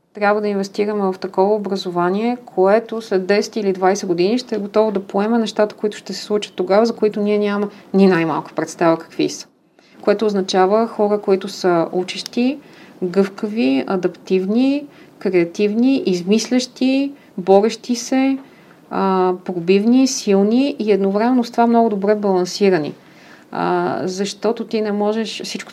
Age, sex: 30-49, female